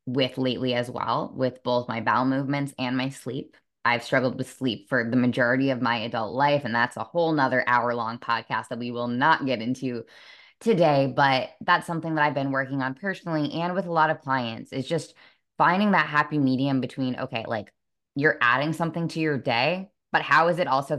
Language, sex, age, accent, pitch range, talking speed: English, female, 10-29, American, 125-160 Hz, 210 wpm